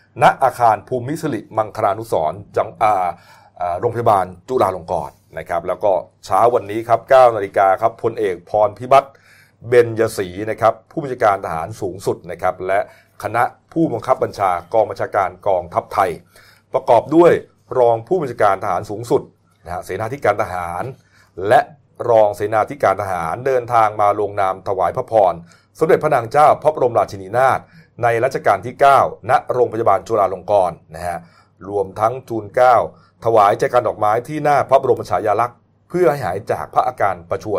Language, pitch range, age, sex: Thai, 100-125 Hz, 30-49, male